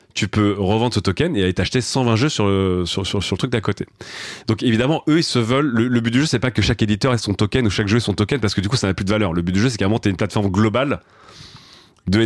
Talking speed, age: 320 wpm, 30-49